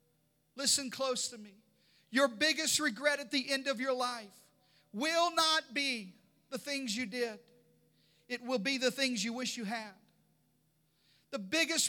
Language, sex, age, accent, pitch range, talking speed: English, male, 40-59, American, 210-255 Hz, 155 wpm